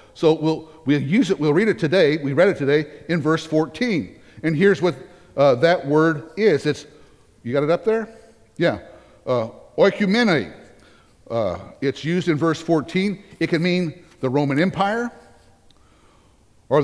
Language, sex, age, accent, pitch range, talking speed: English, male, 60-79, American, 145-185 Hz, 155 wpm